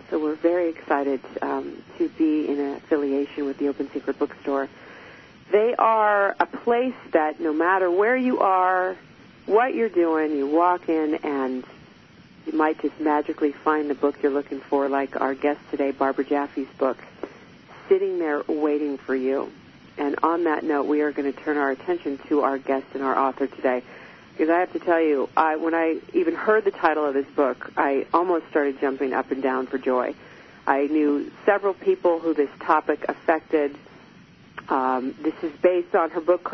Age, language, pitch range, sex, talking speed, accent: 40-59, English, 145-175 Hz, female, 180 wpm, American